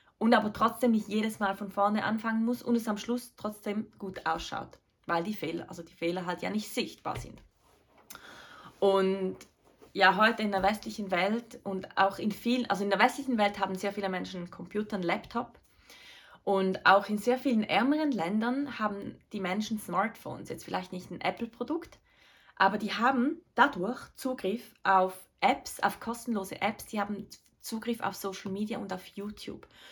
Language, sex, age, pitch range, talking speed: German, female, 20-39, 195-245 Hz, 175 wpm